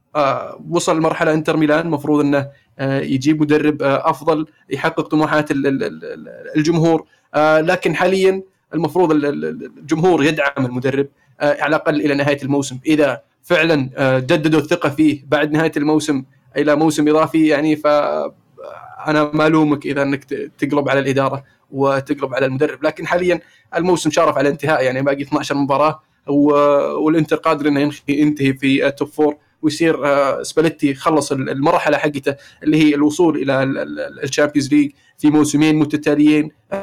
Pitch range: 140-155 Hz